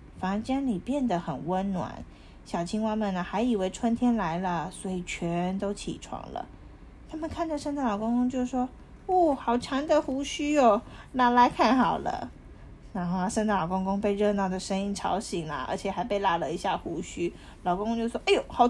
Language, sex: Chinese, female